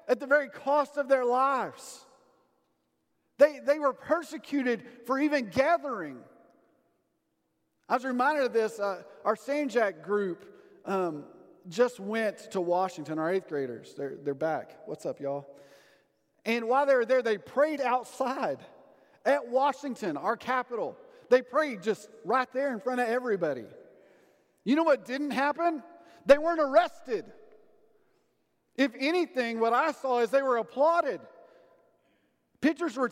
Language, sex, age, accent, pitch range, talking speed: English, male, 40-59, American, 210-285 Hz, 140 wpm